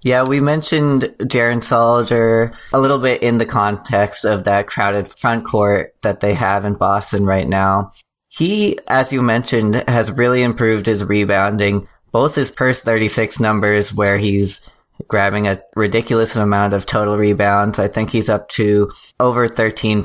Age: 20-39